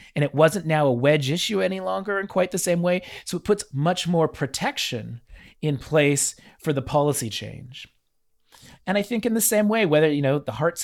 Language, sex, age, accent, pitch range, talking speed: English, male, 30-49, American, 135-170 Hz, 210 wpm